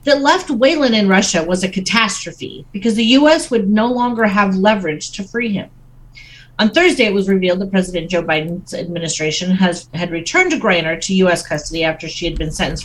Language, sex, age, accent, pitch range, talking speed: English, female, 40-59, American, 155-220 Hz, 195 wpm